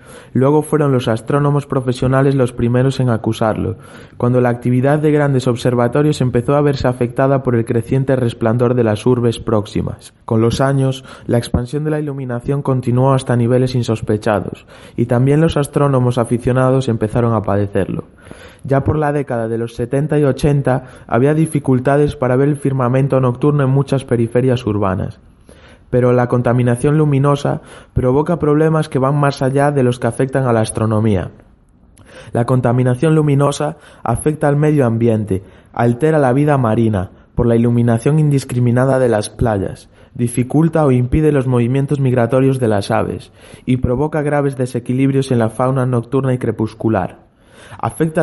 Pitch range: 115-140 Hz